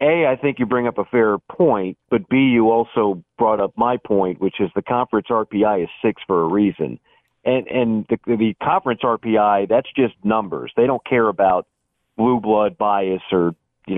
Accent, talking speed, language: American, 200 wpm, English